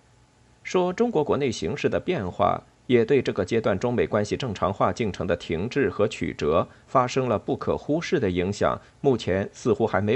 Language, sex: Chinese, male